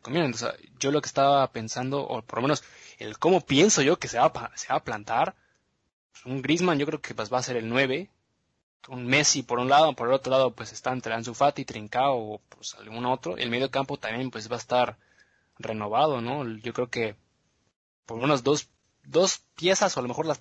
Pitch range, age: 115-145 Hz, 20-39